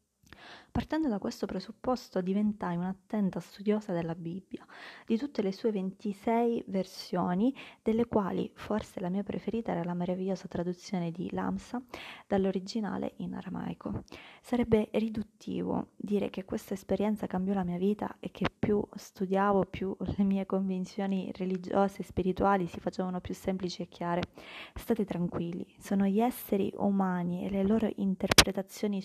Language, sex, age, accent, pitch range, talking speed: Italian, female, 20-39, native, 185-215 Hz, 140 wpm